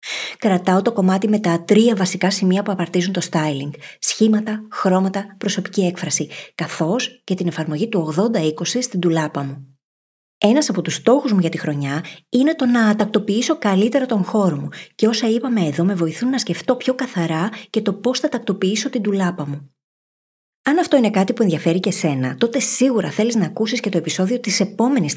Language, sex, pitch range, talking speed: Greek, female, 170-230 Hz, 185 wpm